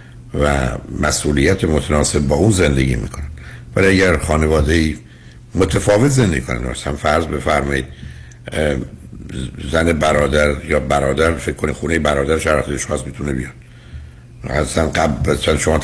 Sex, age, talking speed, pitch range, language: male, 60-79, 115 wpm, 70-95 Hz, Persian